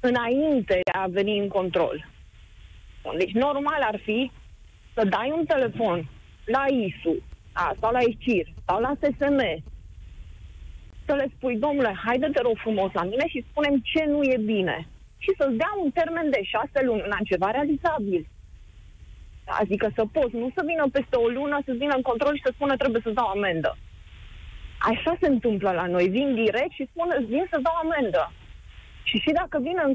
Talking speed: 170 wpm